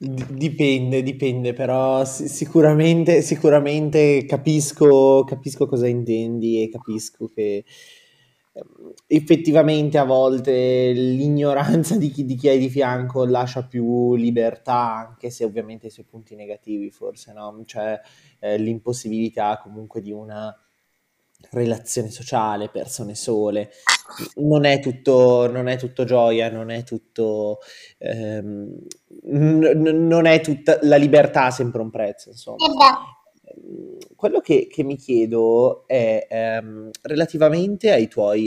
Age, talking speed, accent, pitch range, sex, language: 20-39, 120 wpm, native, 115-150 Hz, male, Italian